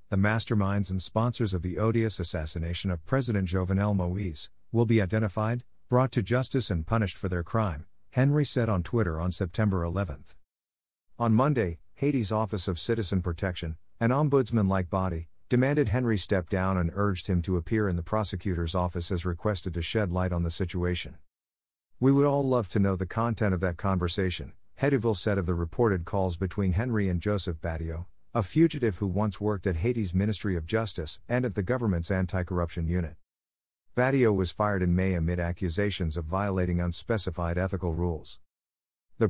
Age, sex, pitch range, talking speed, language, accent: 50-69, male, 90-115 Hz, 170 wpm, English, American